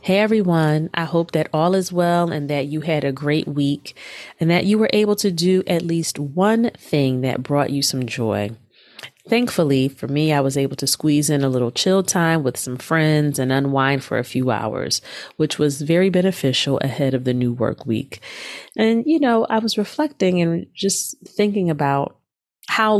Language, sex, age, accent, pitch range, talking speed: English, female, 30-49, American, 135-180 Hz, 195 wpm